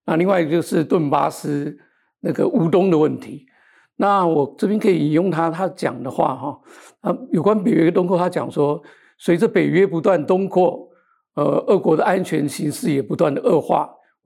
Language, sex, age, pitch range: Chinese, male, 50-69, 150-205 Hz